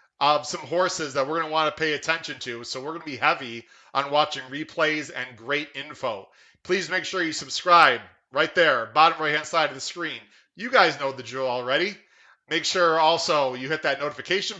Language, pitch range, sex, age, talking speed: English, 135-165 Hz, male, 30-49, 205 wpm